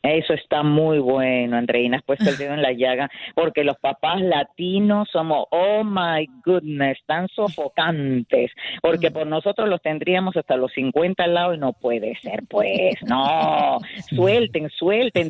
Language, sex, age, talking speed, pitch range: Spanish, female, 40-59, 155 wpm, 135-195 Hz